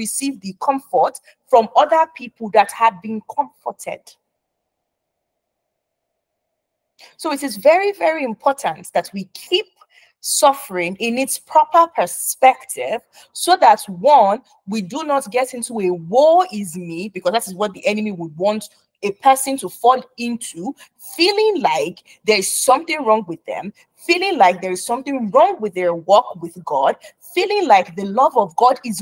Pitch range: 210-315 Hz